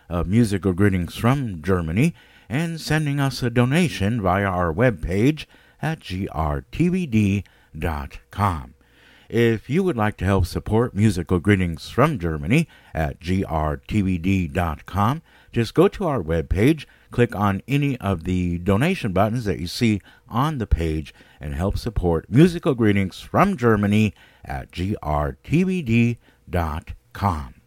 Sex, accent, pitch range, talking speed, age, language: male, American, 85-130 Hz, 120 wpm, 50-69, English